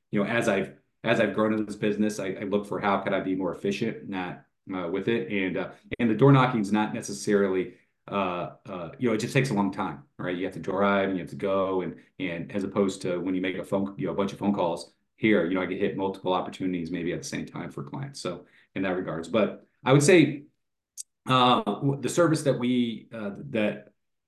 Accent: American